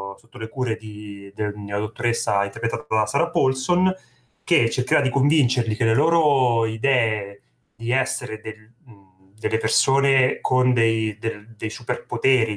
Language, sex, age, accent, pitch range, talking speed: Italian, male, 30-49, native, 105-130 Hz, 135 wpm